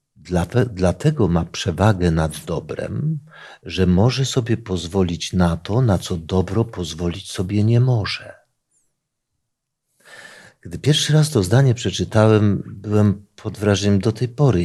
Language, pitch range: Polish, 95-120 Hz